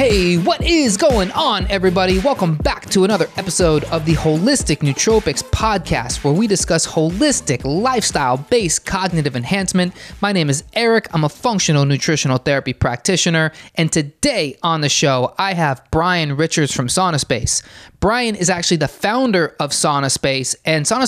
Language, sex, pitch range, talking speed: English, male, 155-215 Hz, 155 wpm